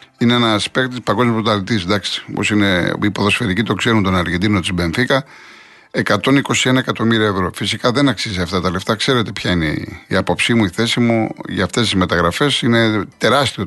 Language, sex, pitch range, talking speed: Greek, male, 105-135 Hz, 175 wpm